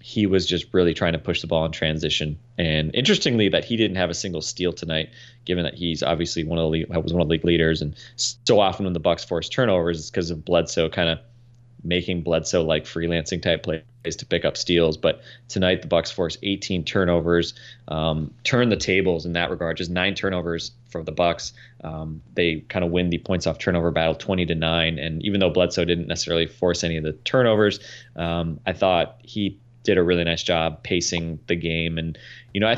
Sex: male